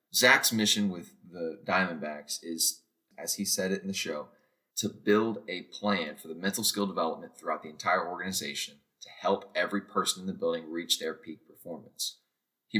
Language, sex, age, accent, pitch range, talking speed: English, male, 20-39, American, 90-105 Hz, 180 wpm